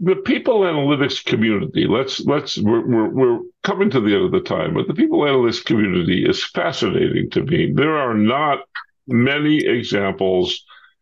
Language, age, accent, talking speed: English, 60-79, American, 165 wpm